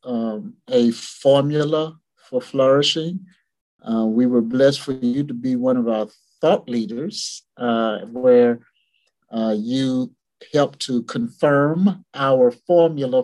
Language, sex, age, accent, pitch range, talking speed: English, male, 50-69, American, 120-170 Hz, 120 wpm